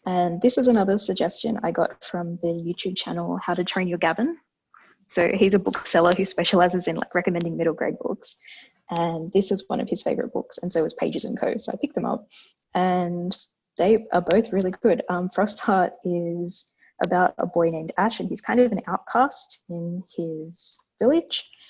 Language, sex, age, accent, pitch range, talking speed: English, female, 20-39, Australian, 175-210 Hz, 195 wpm